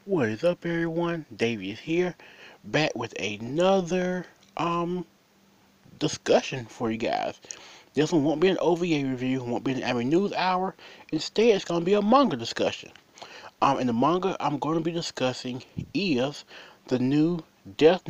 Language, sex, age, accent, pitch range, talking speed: English, male, 30-49, American, 125-175 Hz, 170 wpm